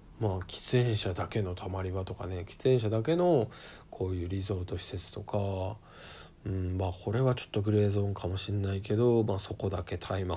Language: Japanese